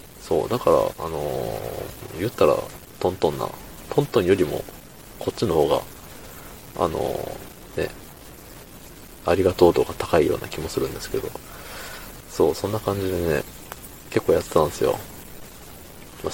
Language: Japanese